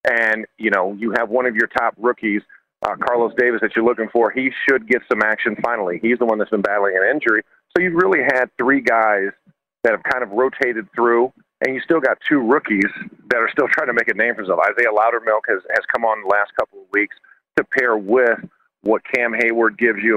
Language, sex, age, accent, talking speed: English, male, 40-59, American, 230 wpm